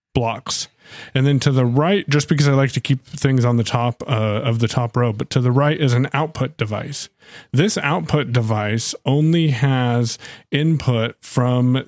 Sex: male